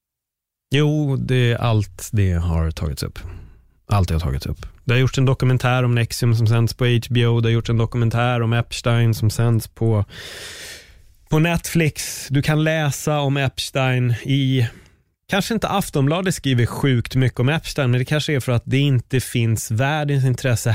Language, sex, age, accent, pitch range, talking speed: Swedish, male, 20-39, native, 105-150 Hz, 175 wpm